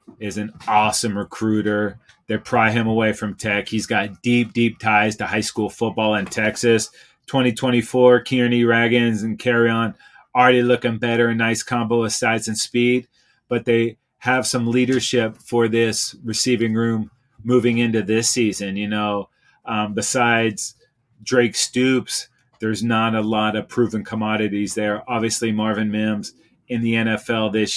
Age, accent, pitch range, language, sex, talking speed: 30-49, American, 110-125 Hz, English, male, 150 wpm